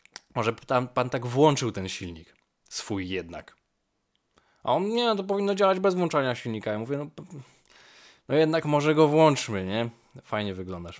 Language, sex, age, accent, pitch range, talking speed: Polish, male, 20-39, native, 105-145 Hz, 155 wpm